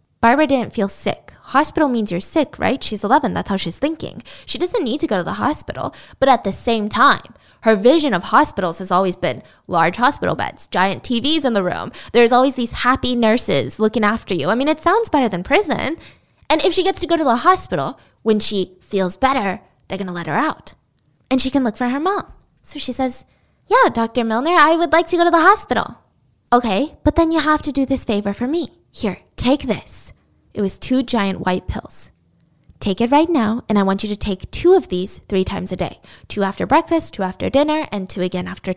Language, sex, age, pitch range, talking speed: English, female, 10-29, 195-280 Hz, 225 wpm